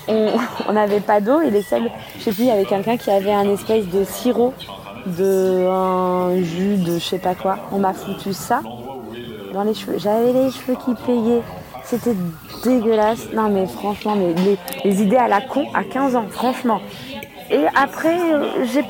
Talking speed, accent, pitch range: 190 wpm, French, 190-245 Hz